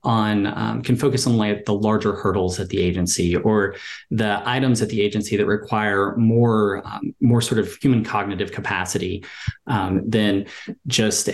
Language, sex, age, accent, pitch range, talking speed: English, male, 30-49, American, 100-120 Hz, 165 wpm